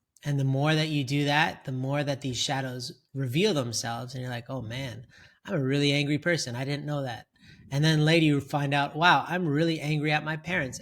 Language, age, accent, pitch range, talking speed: English, 20-39, American, 130-160 Hz, 225 wpm